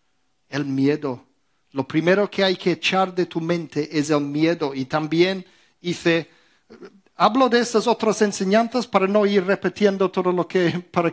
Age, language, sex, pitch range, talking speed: 50-69, Spanish, male, 155-210 Hz, 160 wpm